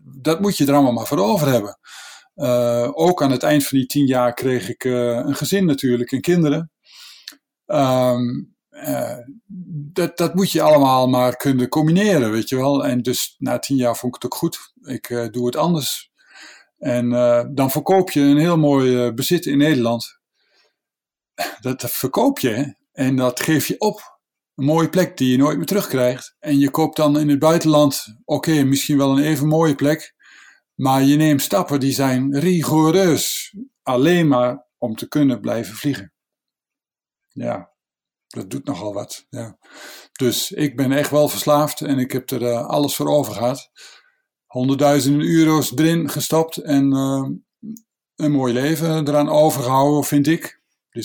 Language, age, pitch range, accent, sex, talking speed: Dutch, 50-69, 130-160 Hz, Dutch, male, 165 wpm